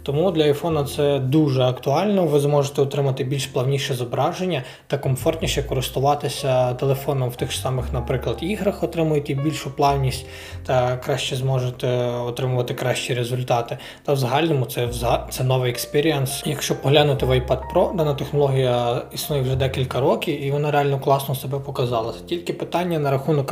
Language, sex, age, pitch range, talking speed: Ukrainian, male, 20-39, 130-155 Hz, 145 wpm